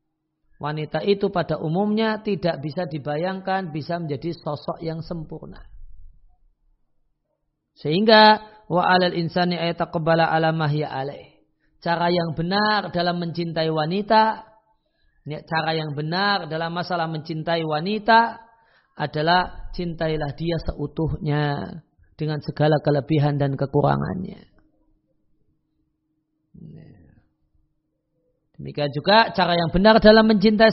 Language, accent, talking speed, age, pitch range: Indonesian, native, 80 wpm, 40-59, 155-200 Hz